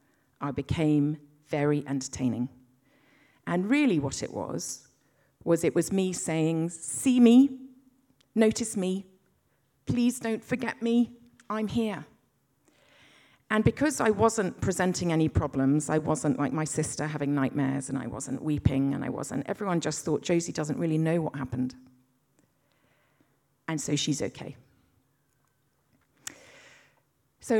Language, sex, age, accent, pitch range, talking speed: English, female, 40-59, British, 135-205 Hz, 130 wpm